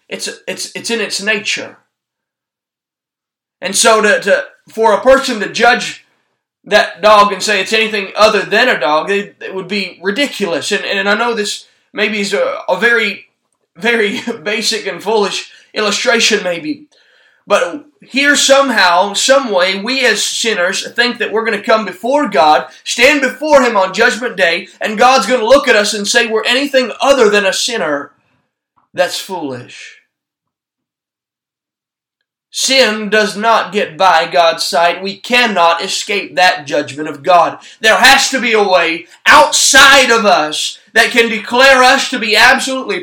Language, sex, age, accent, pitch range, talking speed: English, male, 20-39, American, 190-255 Hz, 160 wpm